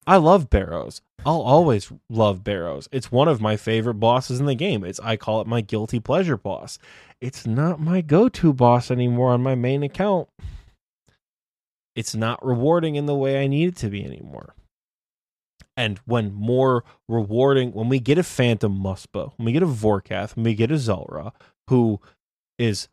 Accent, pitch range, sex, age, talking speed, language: American, 110-140 Hz, male, 20-39, 180 wpm, English